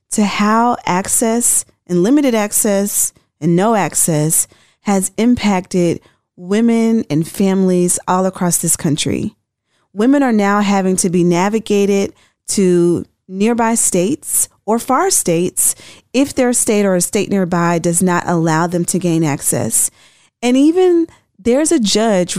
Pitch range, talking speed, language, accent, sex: 175-220 Hz, 135 wpm, English, American, female